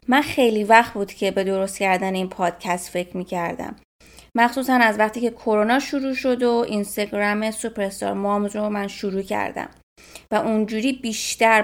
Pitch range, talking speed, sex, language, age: 205-265 Hz, 155 wpm, female, Persian, 20-39